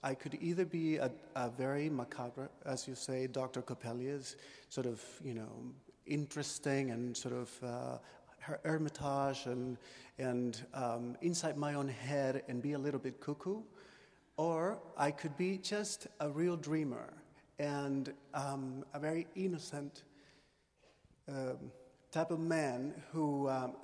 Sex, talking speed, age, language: male, 140 wpm, 40-59, English